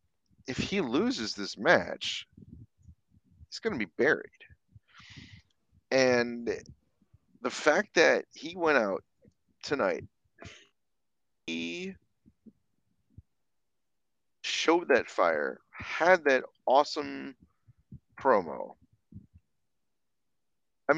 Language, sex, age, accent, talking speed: English, male, 30-49, American, 75 wpm